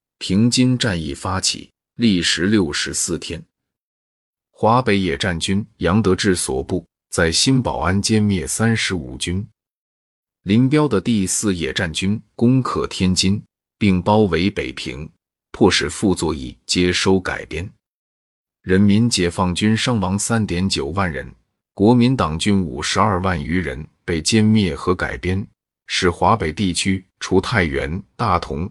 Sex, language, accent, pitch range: male, Chinese, native, 90-110 Hz